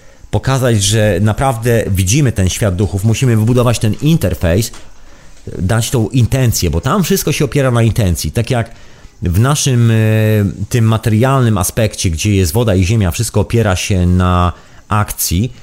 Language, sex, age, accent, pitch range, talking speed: Polish, male, 40-59, native, 95-120 Hz, 145 wpm